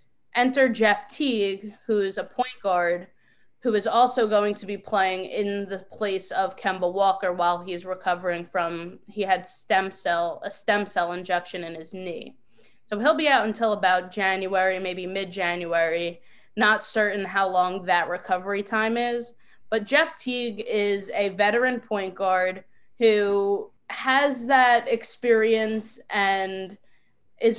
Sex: female